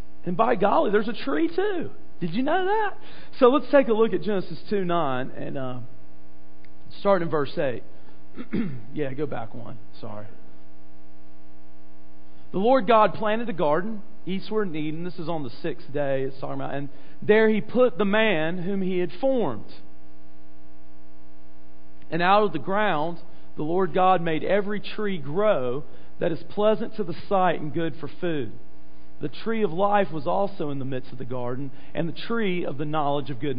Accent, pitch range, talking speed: American, 125-205 Hz, 175 wpm